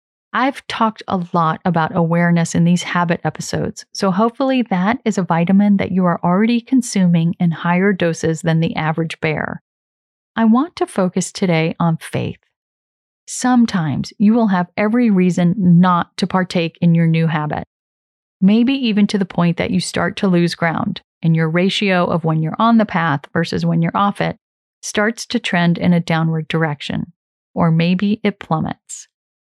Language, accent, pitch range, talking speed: English, American, 170-220 Hz, 170 wpm